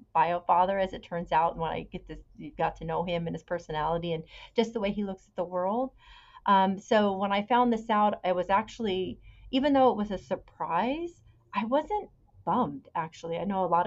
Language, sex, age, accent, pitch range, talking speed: English, female, 40-59, American, 165-210 Hz, 225 wpm